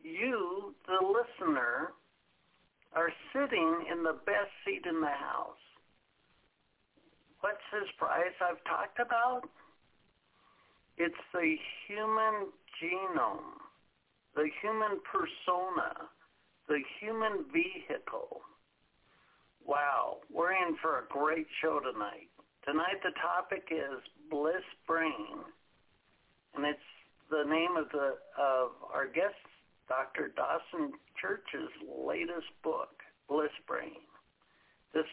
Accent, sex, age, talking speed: American, male, 60-79, 100 wpm